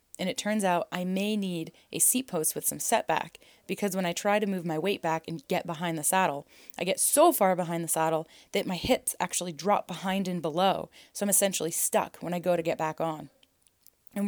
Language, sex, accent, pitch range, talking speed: English, female, American, 160-195 Hz, 225 wpm